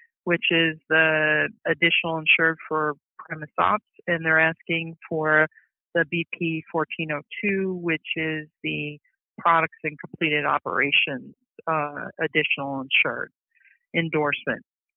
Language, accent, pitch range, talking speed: English, American, 155-185 Hz, 100 wpm